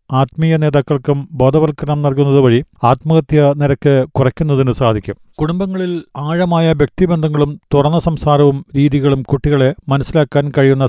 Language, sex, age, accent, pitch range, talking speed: Malayalam, male, 40-59, native, 135-155 Hz, 100 wpm